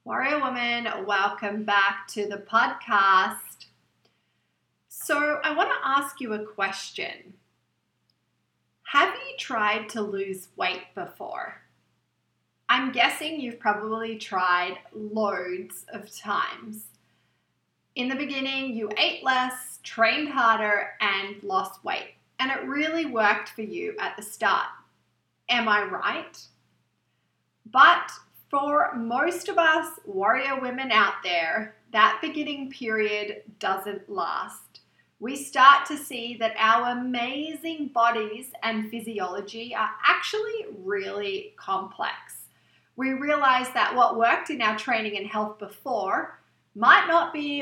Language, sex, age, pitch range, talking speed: English, female, 30-49, 210-280 Hz, 120 wpm